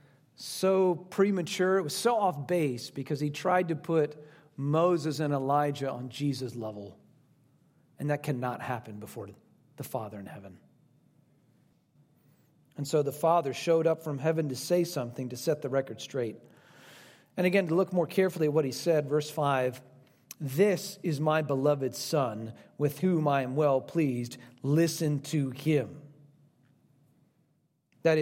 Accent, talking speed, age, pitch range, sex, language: American, 150 wpm, 40-59, 140-175 Hz, male, English